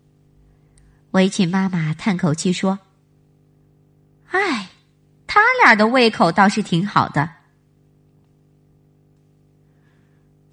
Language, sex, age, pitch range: Chinese, male, 30-49, 145-240 Hz